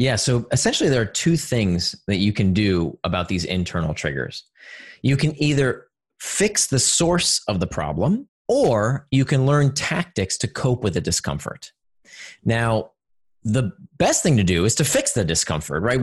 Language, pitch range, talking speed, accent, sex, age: English, 105-165 Hz, 170 wpm, American, male, 30-49